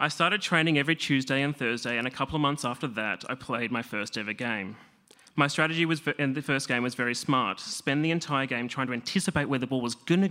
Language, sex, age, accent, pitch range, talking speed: English, male, 30-49, Australian, 125-150 Hz, 245 wpm